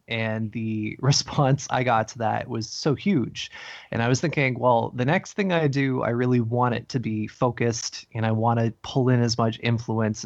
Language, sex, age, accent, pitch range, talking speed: English, male, 20-39, American, 115-135 Hz, 210 wpm